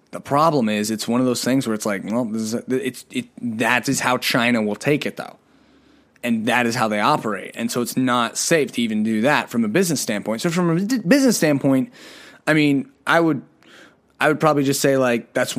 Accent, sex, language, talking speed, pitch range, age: American, male, English, 230 wpm, 125-180 Hz, 20-39